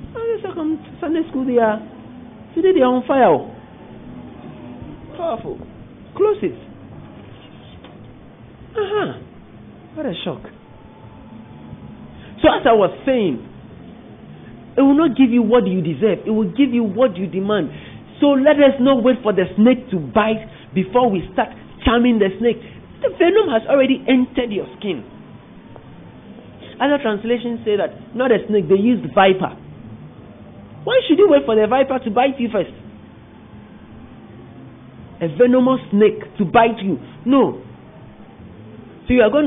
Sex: male